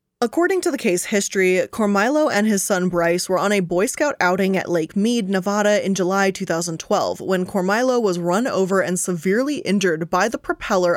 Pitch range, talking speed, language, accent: 185-225 Hz, 185 wpm, English, American